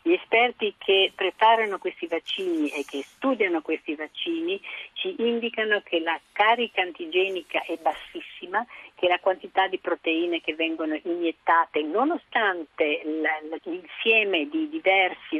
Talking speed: 115 wpm